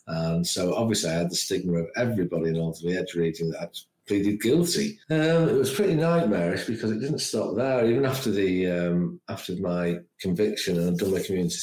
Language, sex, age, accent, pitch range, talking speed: English, male, 50-69, British, 85-100 Hz, 210 wpm